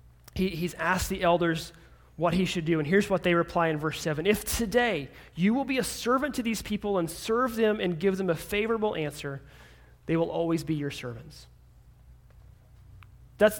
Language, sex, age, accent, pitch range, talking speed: English, male, 30-49, American, 120-195 Hz, 185 wpm